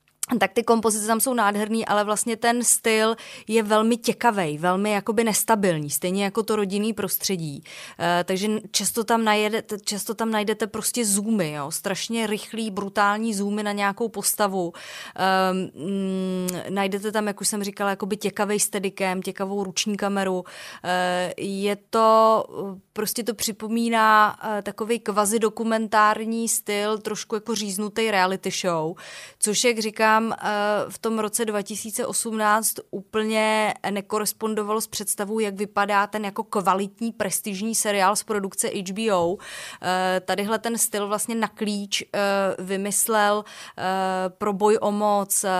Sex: female